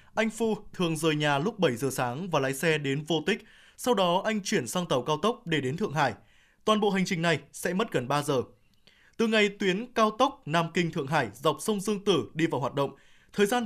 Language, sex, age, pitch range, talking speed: Vietnamese, male, 20-39, 150-200 Hz, 240 wpm